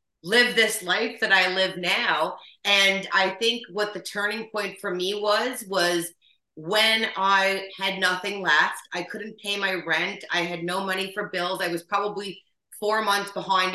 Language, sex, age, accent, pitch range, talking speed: English, female, 30-49, American, 185-215 Hz, 175 wpm